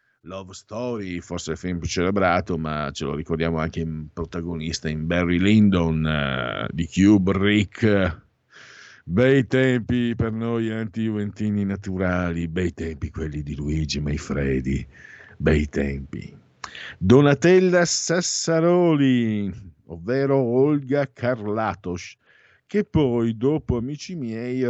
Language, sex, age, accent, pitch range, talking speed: Italian, male, 50-69, native, 85-115 Hz, 110 wpm